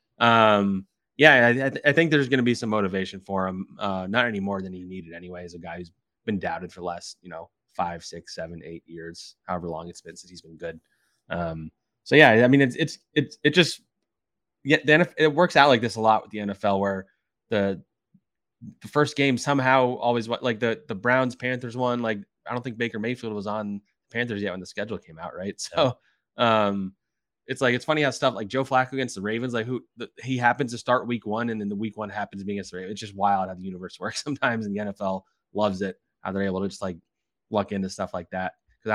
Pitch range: 95-130 Hz